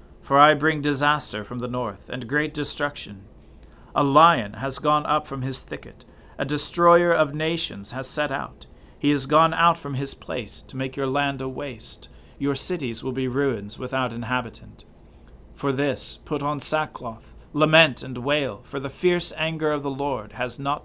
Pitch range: 120-150 Hz